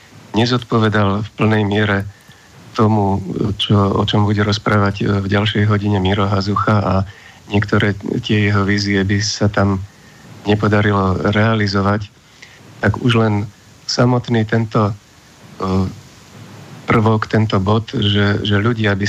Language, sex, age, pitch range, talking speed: Slovak, male, 50-69, 100-110 Hz, 115 wpm